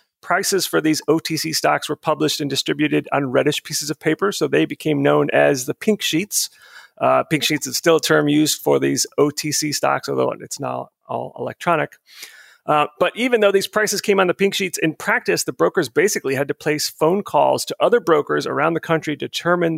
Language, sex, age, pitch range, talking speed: English, male, 40-59, 145-180 Hz, 205 wpm